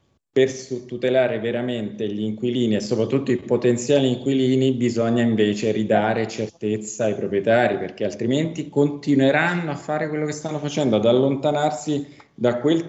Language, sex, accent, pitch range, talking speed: Italian, male, native, 105-130 Hz, 135 wpm